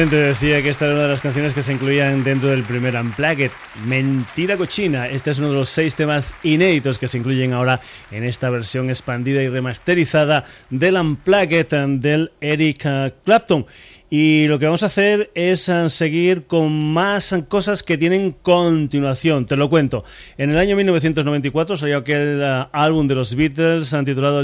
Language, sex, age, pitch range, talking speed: Spanish, male, 30-49, 135-165 Hz, 170 wpm